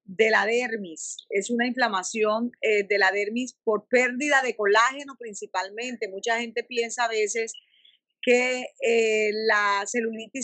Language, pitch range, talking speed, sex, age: Spanish, 215-270 Hz, 140 wpm, female, 30-49